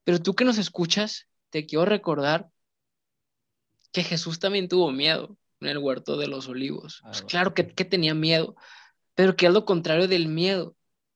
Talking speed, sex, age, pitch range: 170 wpm, male, 20-39, 170-210 Hz